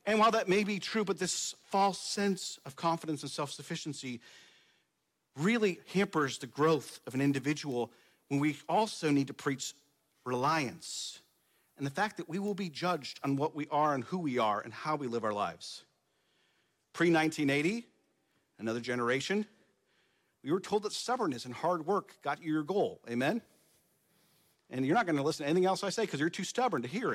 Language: English